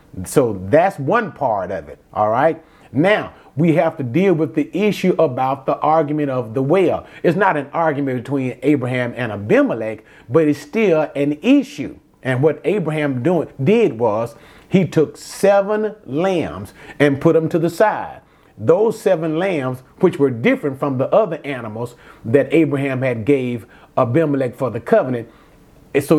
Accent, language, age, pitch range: American, English, 30-49, 135-170 Hz